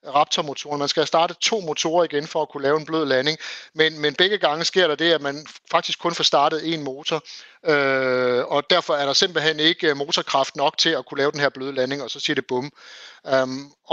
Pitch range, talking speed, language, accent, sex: 140-165 Hz, 230 wpm, Danish, native, male